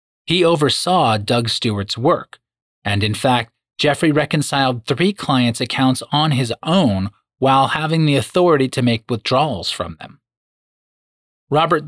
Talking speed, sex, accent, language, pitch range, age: 130 wpm, male, American, English, 110-145 Hz, 30-49